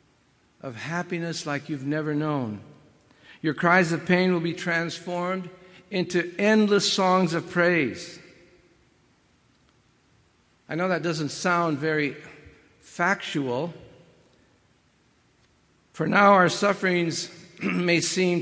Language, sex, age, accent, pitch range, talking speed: English, male, 60-79, American, 160-200 Hz, 100 wpm